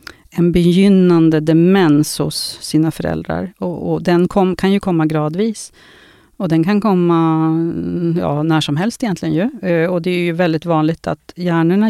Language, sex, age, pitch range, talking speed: Swedish, female, 40-59, 170-220 Hz, 160 wpm